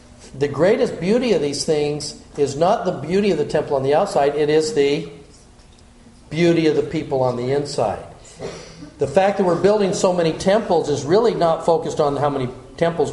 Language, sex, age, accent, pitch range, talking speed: English, male, 50-69, American, 140-195 Hz, 190 wpm